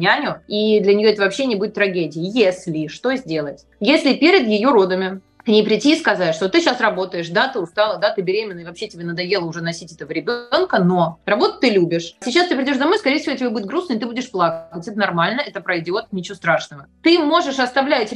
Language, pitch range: Russian, 185-255 Hz